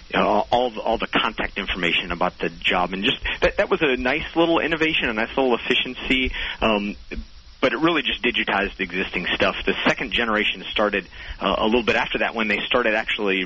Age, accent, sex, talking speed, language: 40-59, American, male, 205 wpm, English